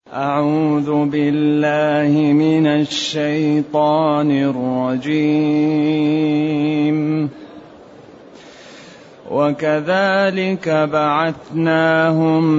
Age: 30-49